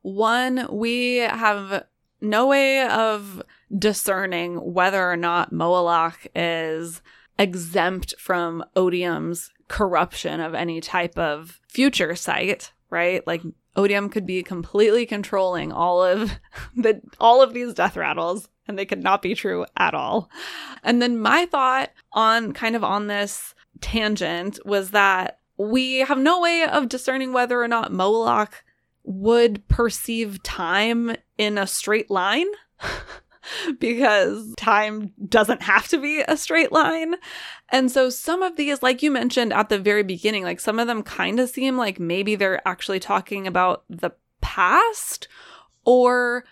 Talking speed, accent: 140 wpm, American